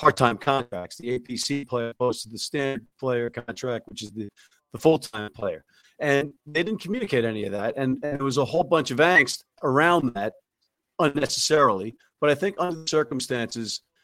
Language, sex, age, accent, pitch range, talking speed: English, male, 50-69, American, 120-150 Hz, 175 wpm